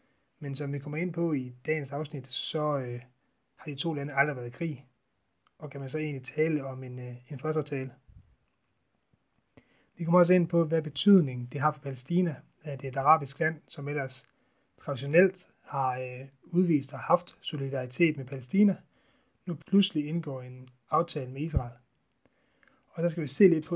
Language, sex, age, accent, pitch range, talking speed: Danish, male, 30-49, native, 135-165 Hz, 175 wpm